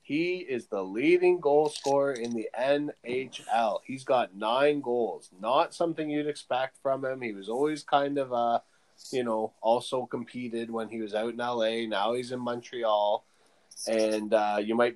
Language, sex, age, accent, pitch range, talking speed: English, male, 20-39, American, 115-145 Hz, 175 wpm